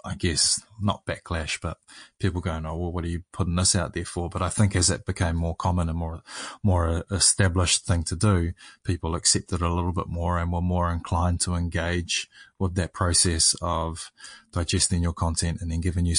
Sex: male